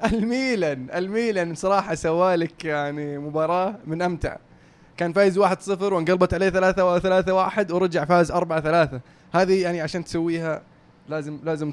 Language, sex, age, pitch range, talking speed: Arabic, male, 20-39, 150-185 Hz, 125 wpm